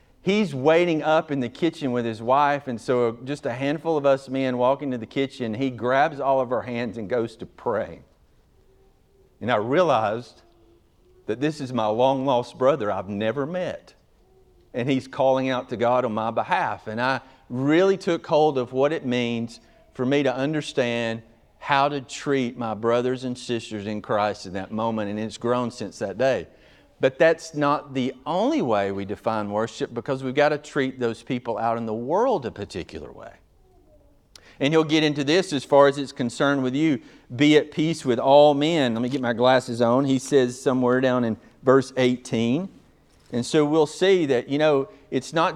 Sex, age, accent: male, 40-59, American